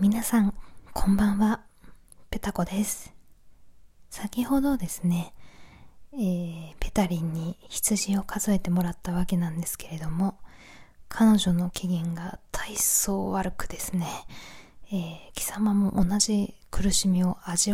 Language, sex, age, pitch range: Japanese, female, 20-39, 170-210 Hz